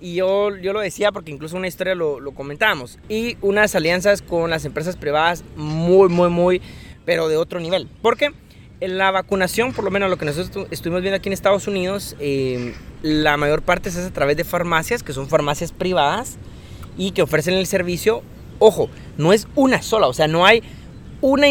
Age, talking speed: 30-49, 195 wpm